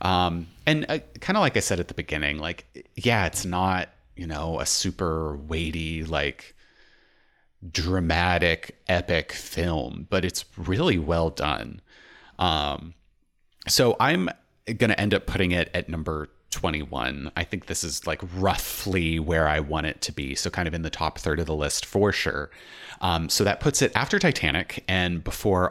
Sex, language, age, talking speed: male, English, 30-49, 170 wpm